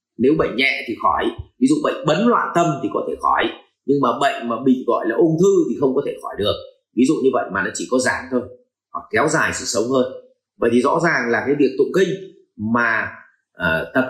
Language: Vietnamese